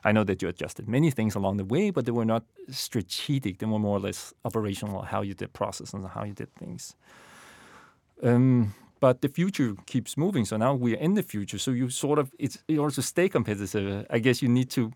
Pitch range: 100-130 Hz